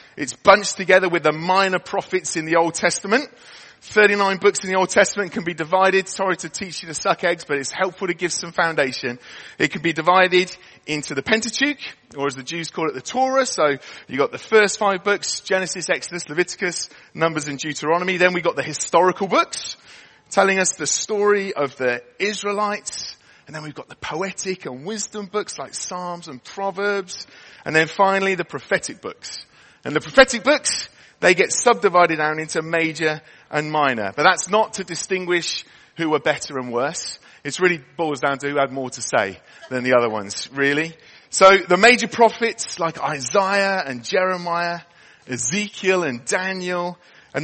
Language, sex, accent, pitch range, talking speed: English, male, British, 150-195 Hz, 180 wpm